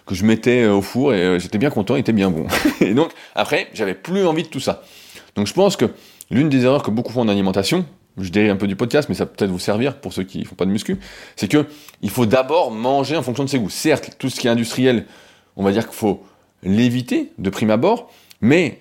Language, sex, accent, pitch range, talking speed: French, male, French, 100-140 Hz, 255 wpm